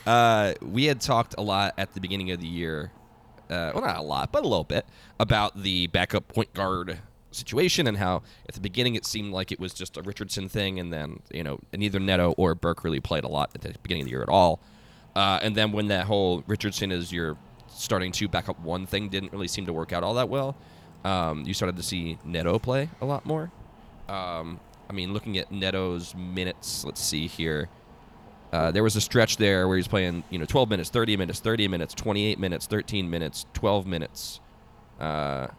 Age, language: 20-39, English